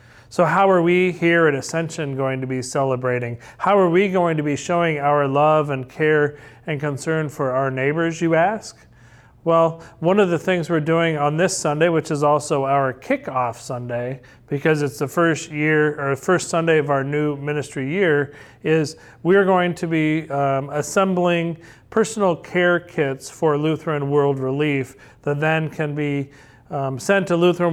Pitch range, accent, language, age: 130-165 Hz, American, English, 40-59